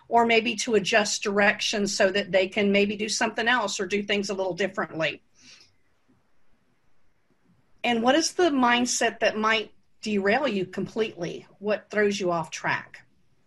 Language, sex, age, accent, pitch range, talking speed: English, female, 50-69, American, 195-240 Hz, 150 wpm